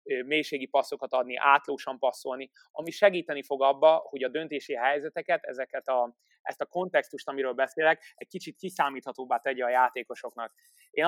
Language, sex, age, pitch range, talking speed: Hungarian, male, 20-39, 130-155 Hz, 145 wpm